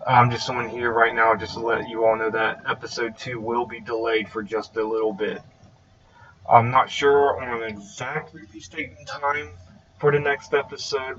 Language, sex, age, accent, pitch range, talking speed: English, male, 30-49, American, 110-120 Hz, 190 wpm